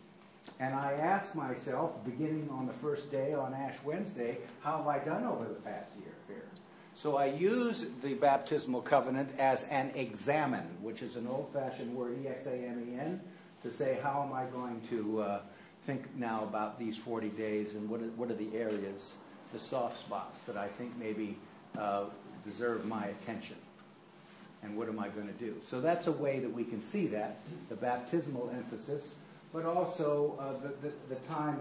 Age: 60-79